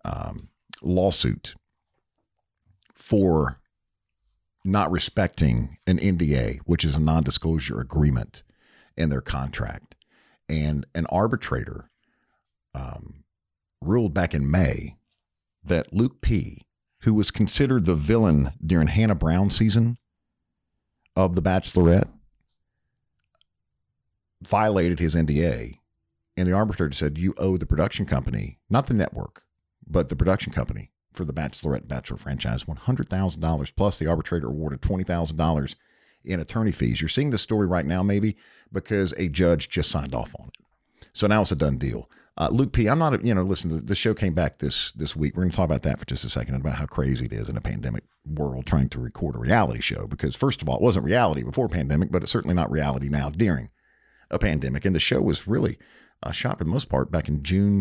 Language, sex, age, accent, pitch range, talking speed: English, male, 50-69, American, 75-100 Hz, 170 wpm